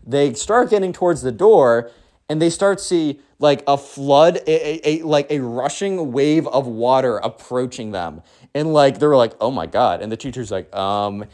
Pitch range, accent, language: 125-190 Hz, American, English